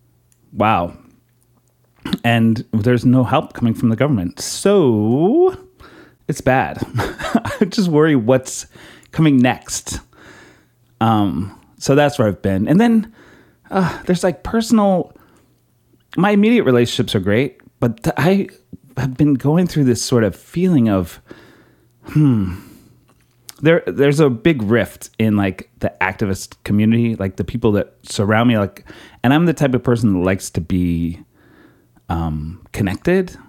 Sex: male